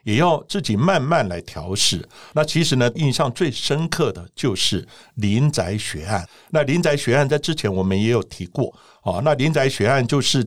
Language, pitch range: Chinese, 105-150 Hz